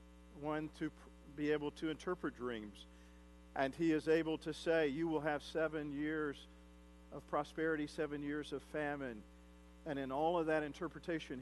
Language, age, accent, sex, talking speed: English, 50-69, American, male, 160 wpm